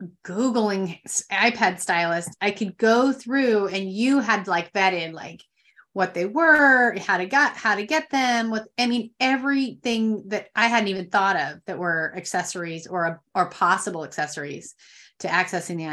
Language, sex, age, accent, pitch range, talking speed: English, female, 30-49, American, 185-225 Hz, 160 wpm